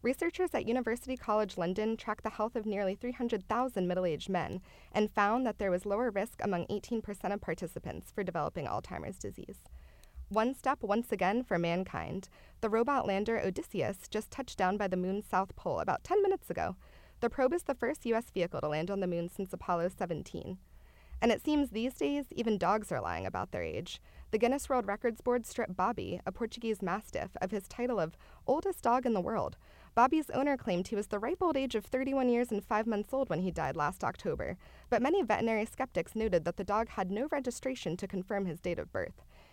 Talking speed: 205 wpm